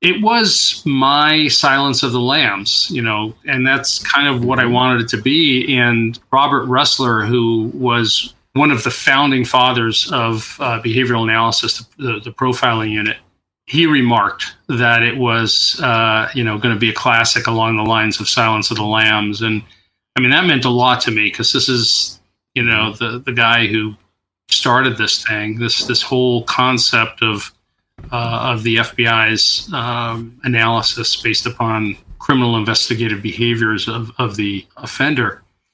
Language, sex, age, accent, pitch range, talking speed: English, male, 40-59, American, 110-130 Hz, 165 wpm